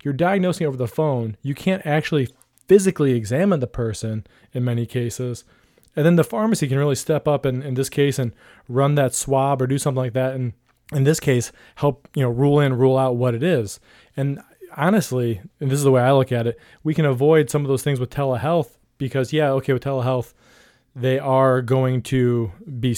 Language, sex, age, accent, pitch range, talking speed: English, male, 20-39, American, 120-145 Hz, 210 wpm